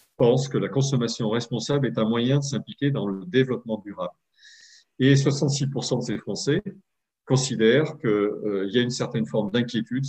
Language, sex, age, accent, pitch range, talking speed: French, male, 40-59, French, 110-140 Hz, 160 wpm